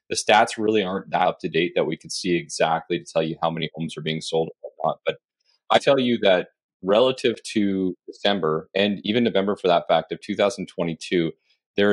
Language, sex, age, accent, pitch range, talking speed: English, male, 30-49, American, 85-100 Hz, 205 wpm